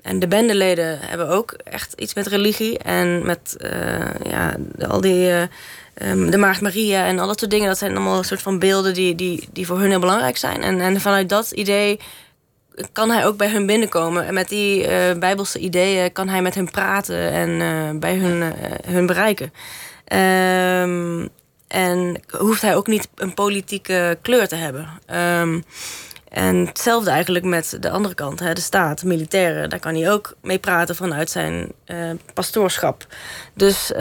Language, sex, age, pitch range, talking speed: Dutch, female, 20-39, 175-200 Hz, 180 wpm